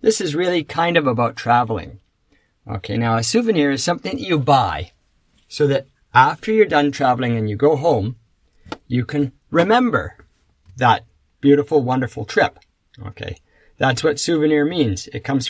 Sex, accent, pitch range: male, American, 110-145 Hz